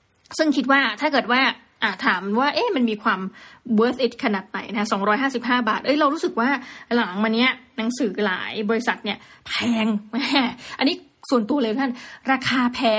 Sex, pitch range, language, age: female, 215-260 Hz, Thai, 20-39